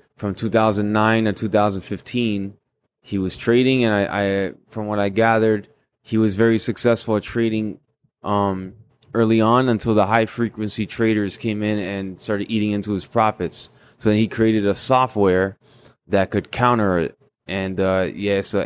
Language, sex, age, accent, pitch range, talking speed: English, male, 20-39, American, 100-115 Hz, 180 wpm